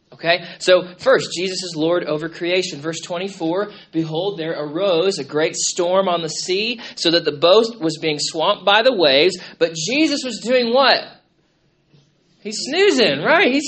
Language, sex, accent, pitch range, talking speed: English, male, American, 155-205 Hz, 165 wpm